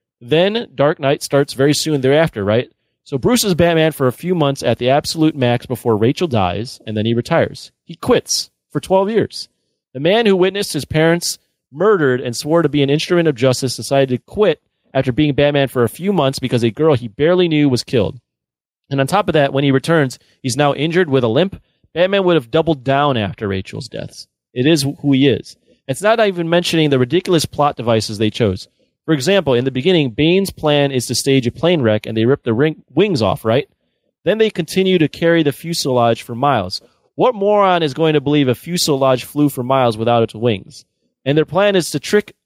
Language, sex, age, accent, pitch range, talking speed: English, male, 30-49, American, 130-180 Hz, 215 wpm